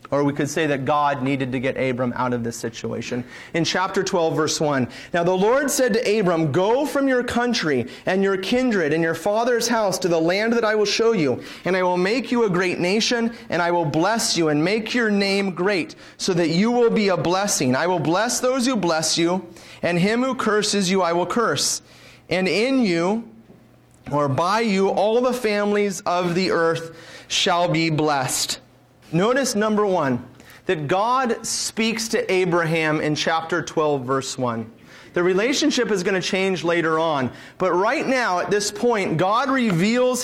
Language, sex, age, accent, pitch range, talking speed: English, male, 30-49, American, 155-210 Hz, 190 wpm